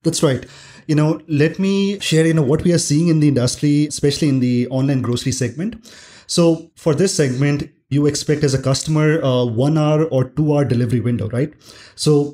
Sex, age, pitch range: male, 30-49, 135-165 Hz